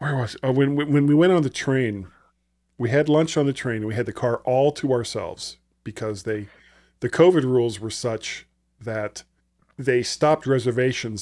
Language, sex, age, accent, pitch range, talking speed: English, male, 40-59, American, 110-150 Hz, 180 wpm